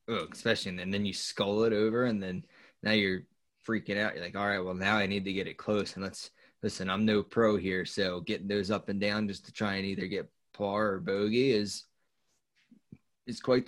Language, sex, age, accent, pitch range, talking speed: English, male, 20-39, American, 100-115 Hz, 225 wpm